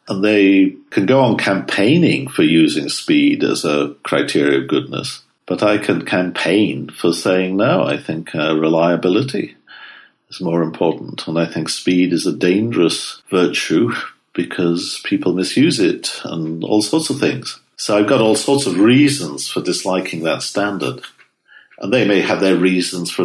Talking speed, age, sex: 165 wpm, 50-69, male